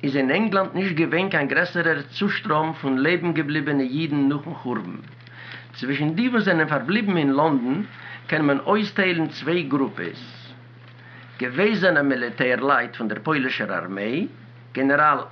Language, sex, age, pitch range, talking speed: English, male, 60-79, 125-185 Hz, 125 wpm